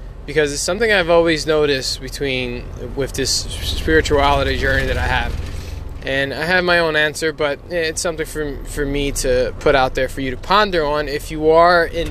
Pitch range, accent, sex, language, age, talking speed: 120-160 Hz, American, male, English, 20-39, 195 wpm